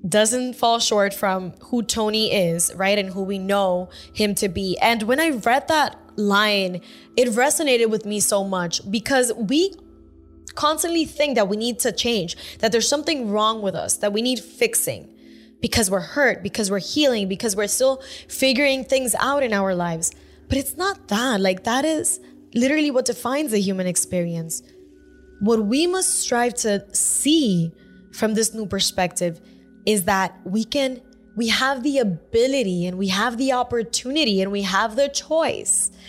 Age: 10-29